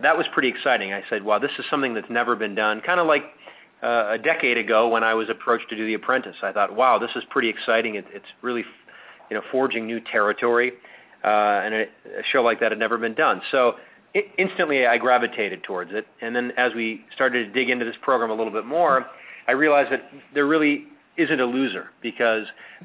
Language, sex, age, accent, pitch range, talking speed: English, male, 30-49, American, 110-135 Hz, 225 wpm